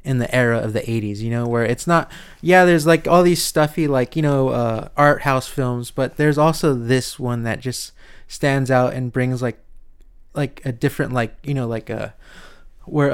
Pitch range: 115-140 Hz